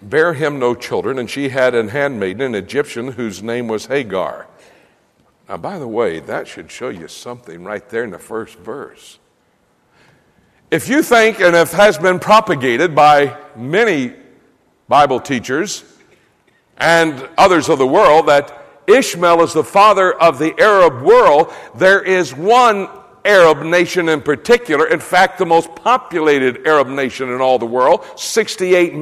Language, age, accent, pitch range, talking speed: English, 60-79, American, 150-240 Hz, 155 wpm